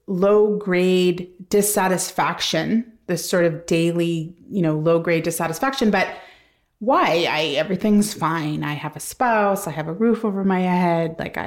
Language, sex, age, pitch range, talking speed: English, female, 30-49, 165-205 Hz, 145 wpm